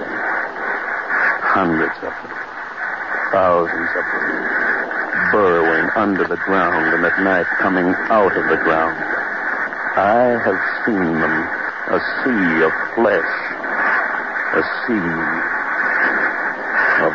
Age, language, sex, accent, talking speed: 60-79, English, male, American, 100 wpm